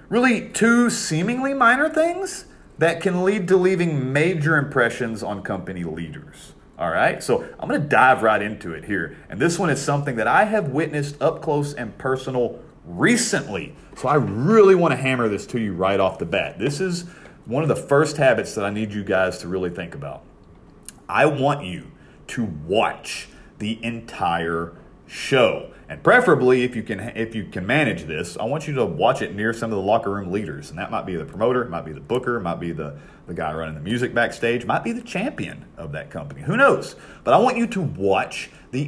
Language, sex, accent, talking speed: English, male, American, 210 wpm